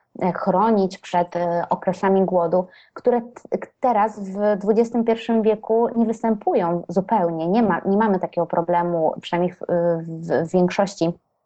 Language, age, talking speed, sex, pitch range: Polish, 20-39, 115 wpm, female, 180-220 Hz